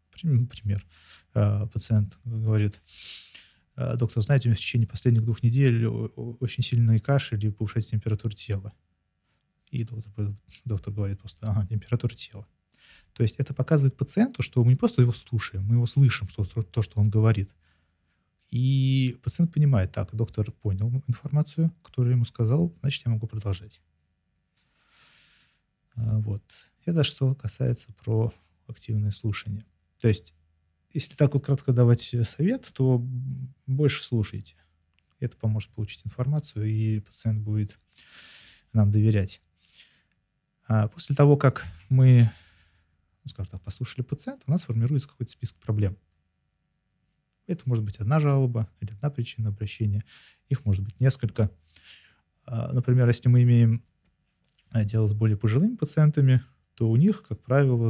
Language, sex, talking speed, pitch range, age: Russian, male, 130 wpm, 100-125 Hz, 20-39